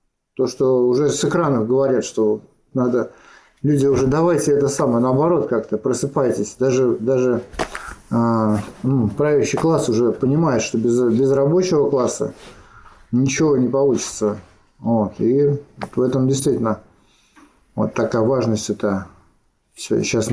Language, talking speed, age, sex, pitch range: Russian, 125 wpm, 50-69, male, 110-140 Hz